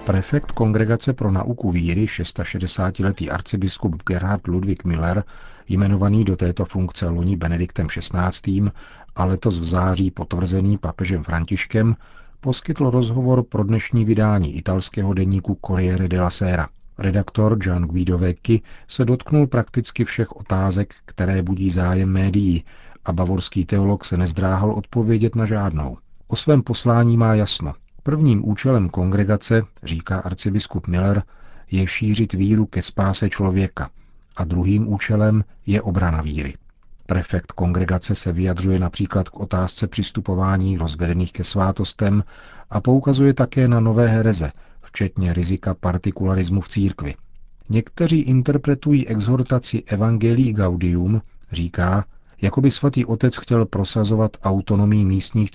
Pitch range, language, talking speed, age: 90-110 Hz, Czech, 125 wpm, 40-59